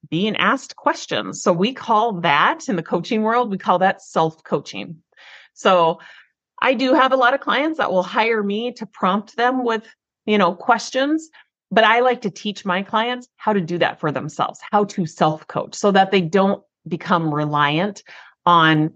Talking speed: 185 wpm